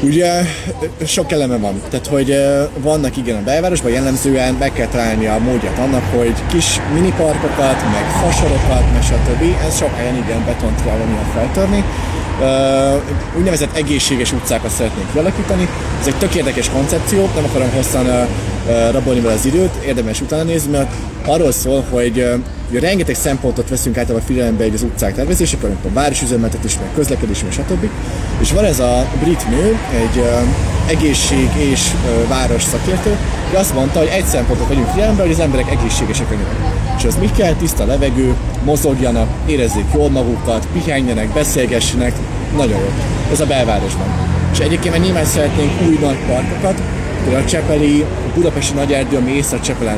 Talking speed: 160 wpm